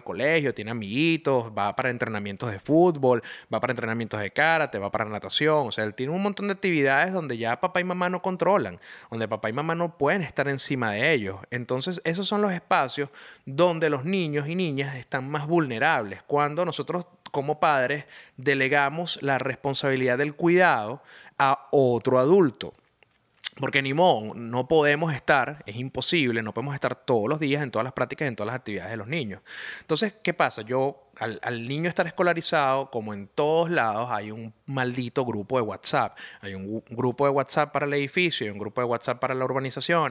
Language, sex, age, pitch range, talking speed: Spanish, male, 30-49, 125-170 Hz, 190 wpm